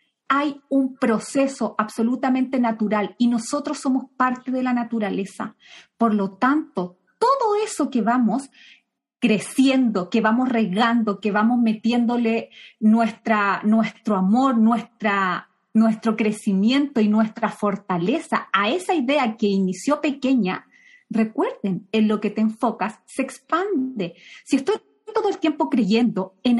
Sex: female